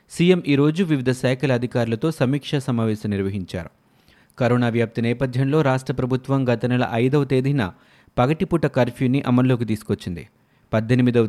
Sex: male